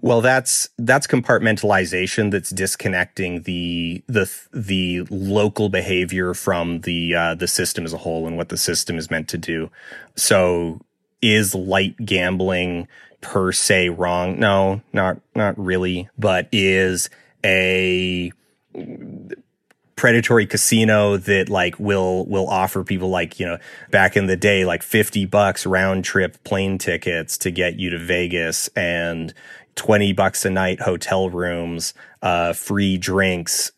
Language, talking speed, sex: English, 140 wpm, male